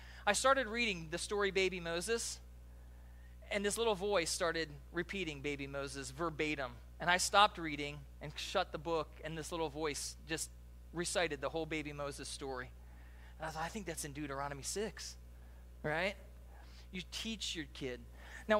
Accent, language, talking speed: American, English, 160 wpm